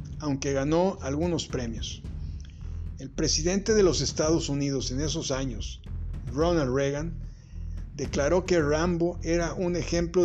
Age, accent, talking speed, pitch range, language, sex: 50-69, Mexican, 125 wpm, 125-160 Hz, Spanish, male